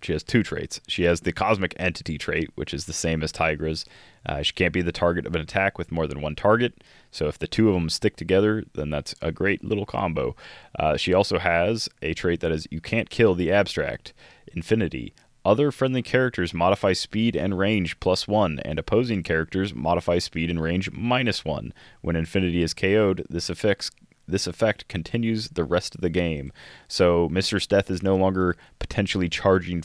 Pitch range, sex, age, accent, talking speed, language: 80-100 Hz, male, 20-39, American, 195 wpm, English